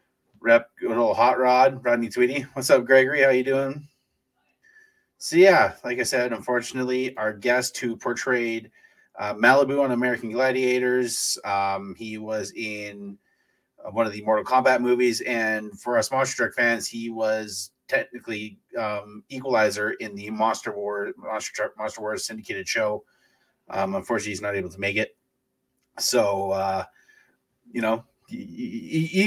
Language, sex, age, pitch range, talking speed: English, male, 30-49, 110-150 Hz, 155 wpm